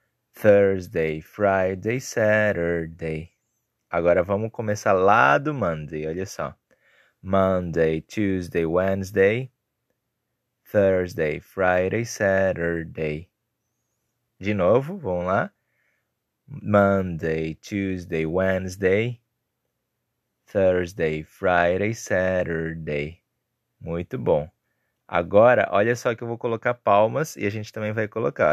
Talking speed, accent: 90 wpm, Brazilian